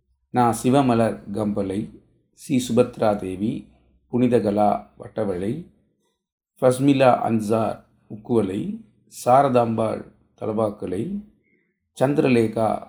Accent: native